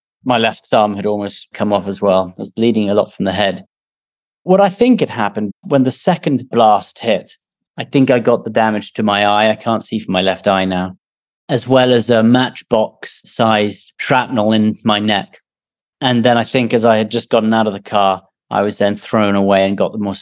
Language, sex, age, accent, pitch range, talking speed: English, male, 30-49, British, 105-120 Hz, 225 wpm